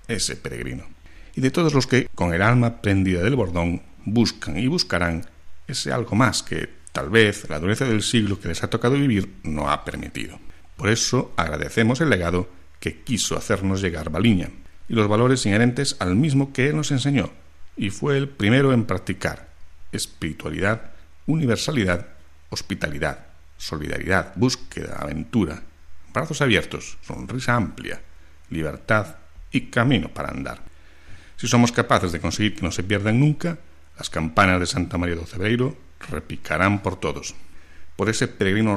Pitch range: 80-120 Hz